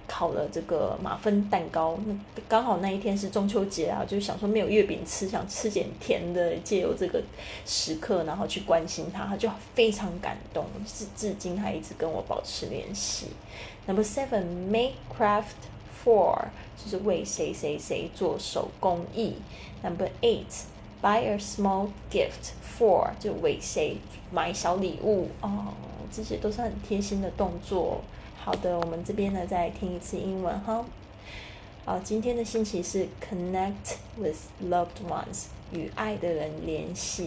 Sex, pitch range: female, 170-215 Hz